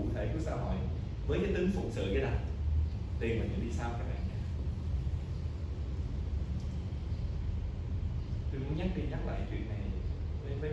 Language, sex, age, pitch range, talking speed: Vietnamese, male, 20-39, 80-105 Hz, 135 wpm